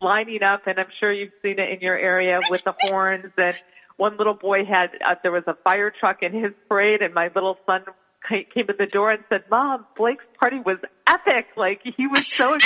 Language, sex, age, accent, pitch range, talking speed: English, female, 40-59, American, 175-220 Hz, 225 wpm